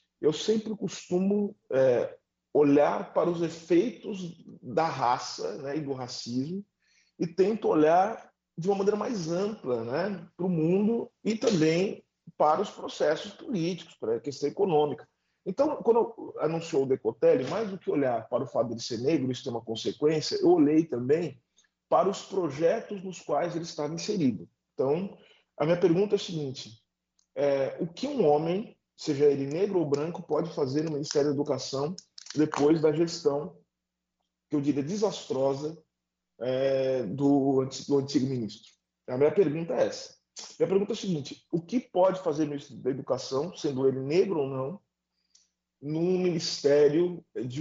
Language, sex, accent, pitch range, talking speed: Portuguese, male, Brazilian, 140-195 Hz, 160 wpm